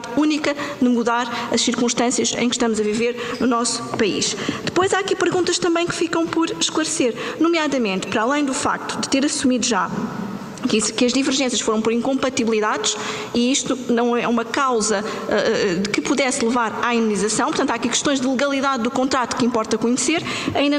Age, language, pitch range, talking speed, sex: 20-39, Portuguese, 235-295 Hz, 175 wpm, female